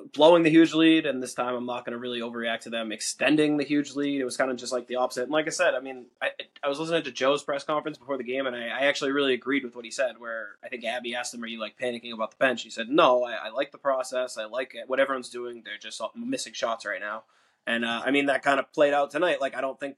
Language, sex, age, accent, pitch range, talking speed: English, male, 20-39, American, 120-140 Hz, 305 wpm